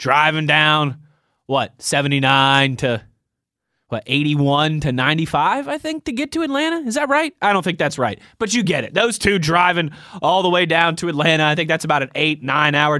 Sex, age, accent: male, 20-39, American